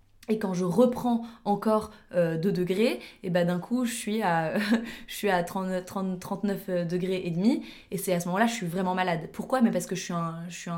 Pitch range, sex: 180-230 Hz, female